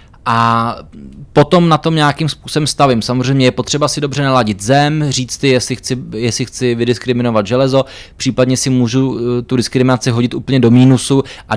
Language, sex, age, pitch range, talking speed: Czech, male, 20-39, 115-135 Hz, 165 wpm